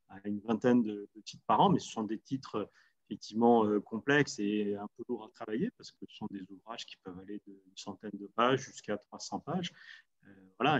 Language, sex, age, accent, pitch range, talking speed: French, male, 30-49, French, 105-135 Hz, 215 wpm